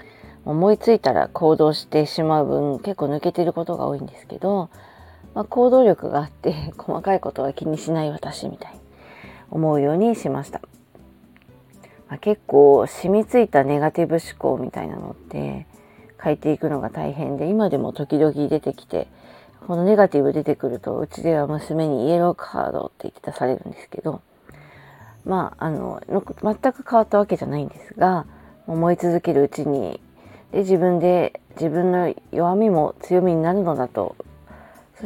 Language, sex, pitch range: Japanese, female, 145-195 Hz